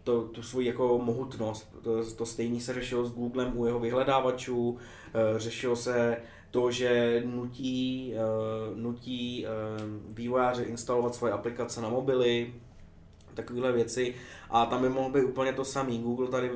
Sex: male